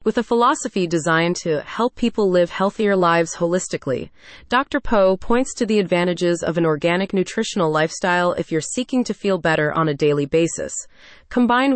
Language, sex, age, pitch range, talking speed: English, female, 30-49, 170-235 Hz, 170 wpm